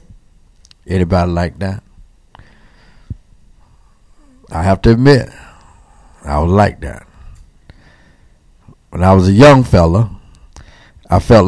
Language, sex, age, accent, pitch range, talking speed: English, male, 60-79, American, 90-115 Hz, 100 wpm